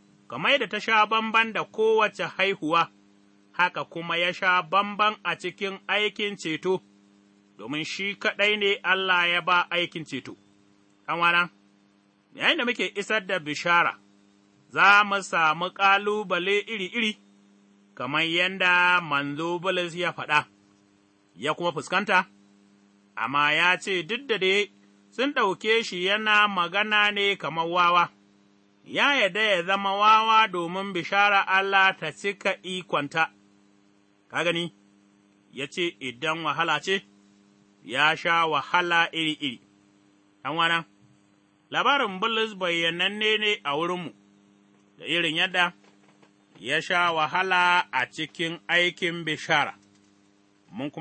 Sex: male